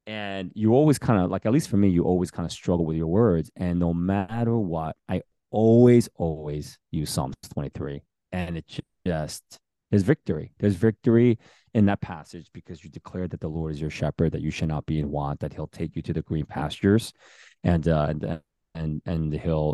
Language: English